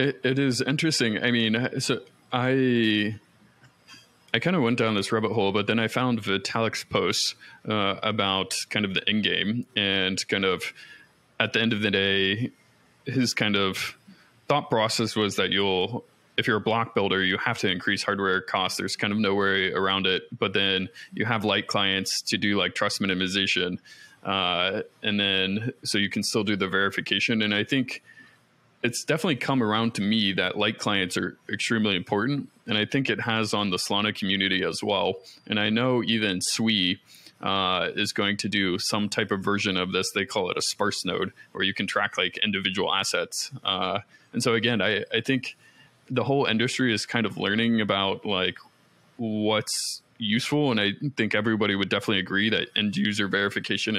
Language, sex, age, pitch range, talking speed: English, male, 20-39, 100-115 Hz, 185 wpm